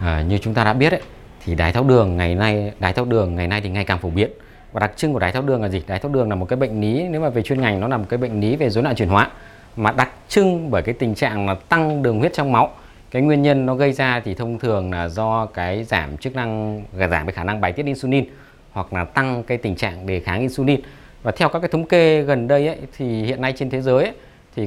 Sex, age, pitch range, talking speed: male, 20-39, 100-140 Hz, 285 wpm